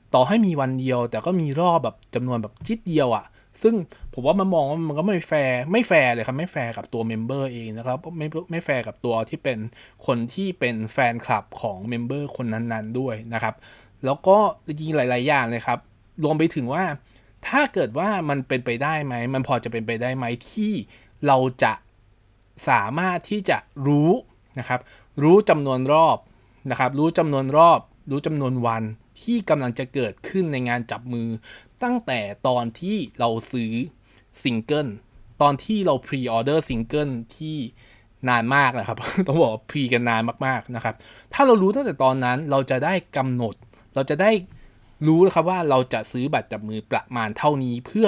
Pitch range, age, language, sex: 115-155 Hz, 20-39, Thai, male